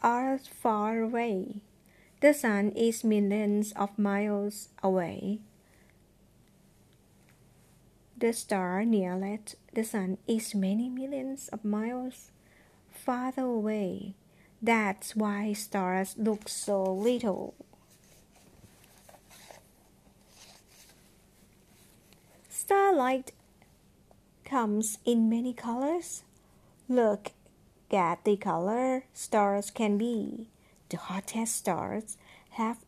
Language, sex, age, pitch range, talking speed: English, female, 50-69, 200-245 Hz, 80 wpm